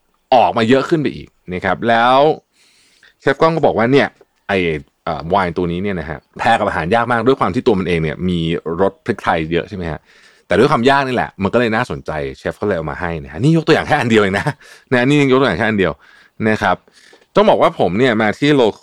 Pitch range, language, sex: 90-135 Hz, Thai, male